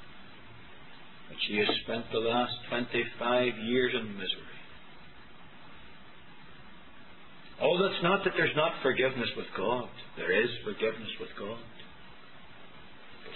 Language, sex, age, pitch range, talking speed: English, male, 50-69, 105-130 Hz, 110 wpm